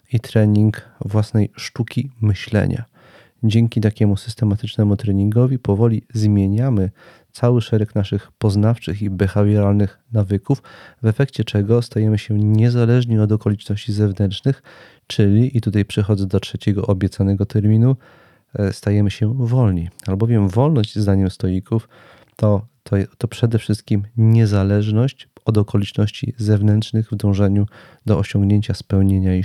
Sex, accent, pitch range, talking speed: male, native, 100-115 Hz, 115 wpm